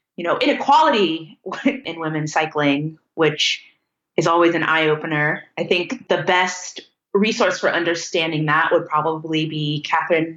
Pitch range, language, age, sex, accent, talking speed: 155-195 Hz, English, 20-39, female, American, 135 wpm